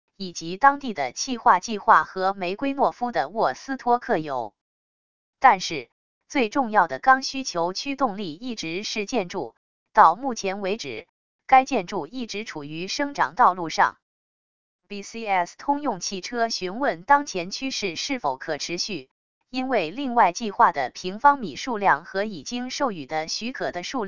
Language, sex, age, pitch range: English, female, 20-39, 180-240 Hz